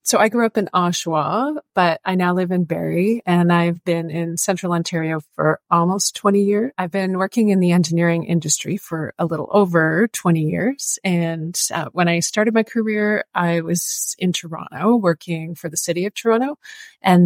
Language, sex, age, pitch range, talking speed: English, female, 30-49, 170-205 Hz, 185 wpm